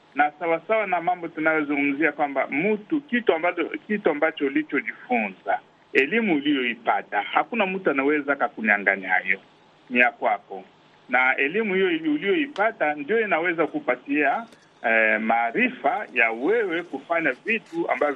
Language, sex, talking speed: Swahili, male, 120 wpm